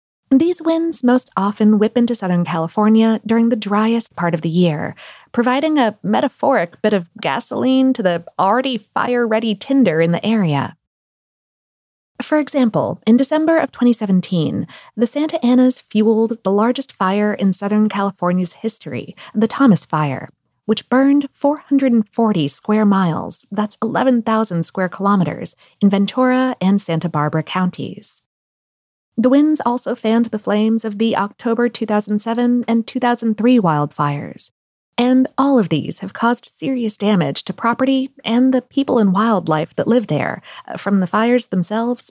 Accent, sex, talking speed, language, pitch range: American, female, 140 wpm, English, 190-250 Hz